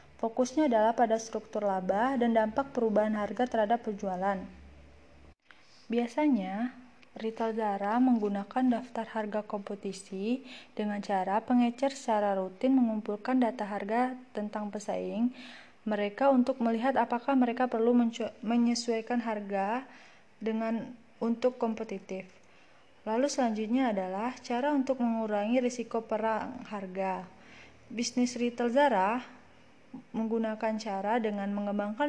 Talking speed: 105 wpm